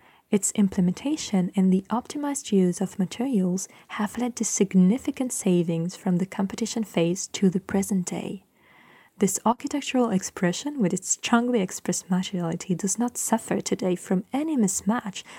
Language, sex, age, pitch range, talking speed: French, female, 20-39, 185-230 Hz, 140 wpm